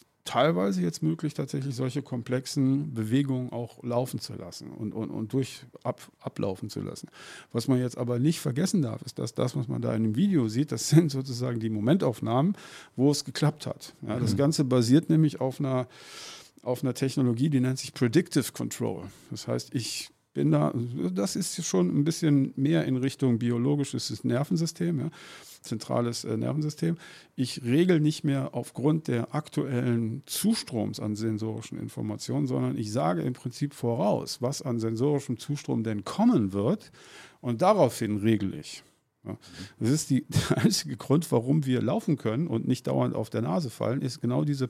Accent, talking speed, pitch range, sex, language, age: German, 160 wpm, 120-150 Hz, male, German, 50-69